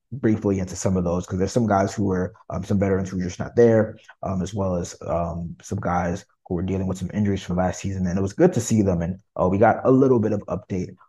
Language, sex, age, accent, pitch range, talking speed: English, male, 20-39, American, 90-105 Hz, 275 wpm